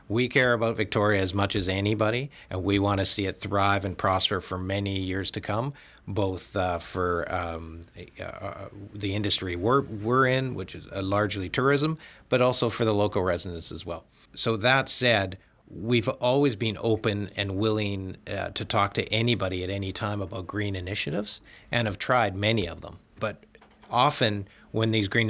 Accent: American